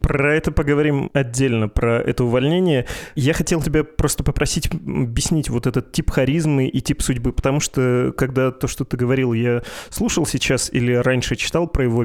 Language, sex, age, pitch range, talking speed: Russian, male, 20-39, 120-140 Hz, 175 wpm